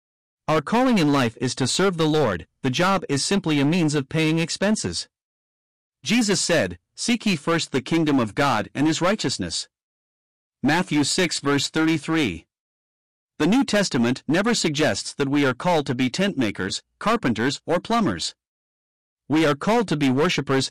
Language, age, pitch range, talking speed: English, 50-69, 125-170 Hz, 160 wpm